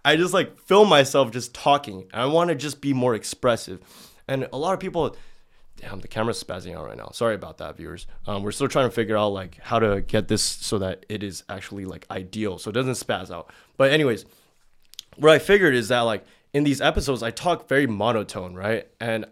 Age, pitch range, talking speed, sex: 20-39, 100-140 Hz, 220 wpm, male